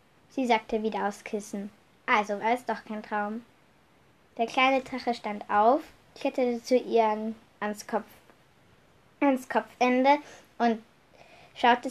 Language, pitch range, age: German, 210-260 Hz, 10-29